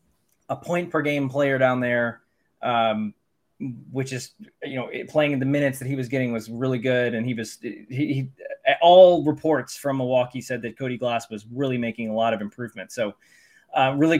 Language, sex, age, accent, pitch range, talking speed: English, male, 20-39, American, 130-165 Hz, 195 wpm